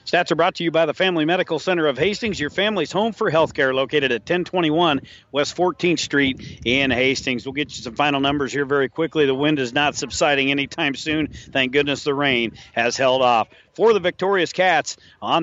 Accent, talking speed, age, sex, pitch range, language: American, 210 wpm, 40-59, male, 135-170 Hz, English